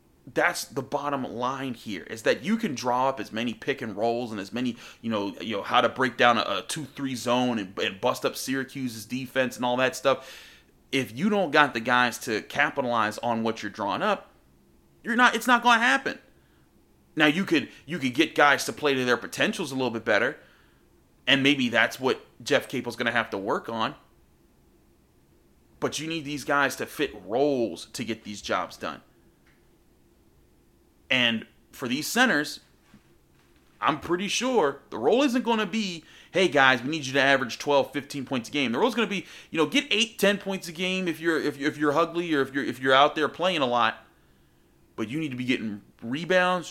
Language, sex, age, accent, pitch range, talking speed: English, male, 30-49, American, 100-145 Hz, 210 wpm